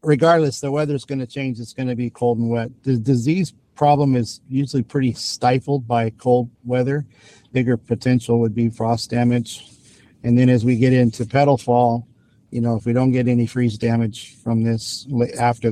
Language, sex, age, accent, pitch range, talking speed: English, male, 50-69, American, 115-130 Hz, 185 wpm